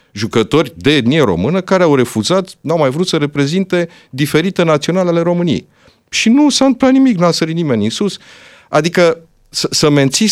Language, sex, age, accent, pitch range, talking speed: Romanian, male, 50-69, native, 115-180 Hz, 165 wpm